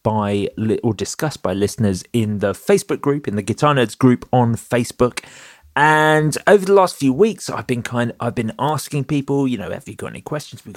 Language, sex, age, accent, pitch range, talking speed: English, male, 30-49, British, 105-140 Hz, 205 wpm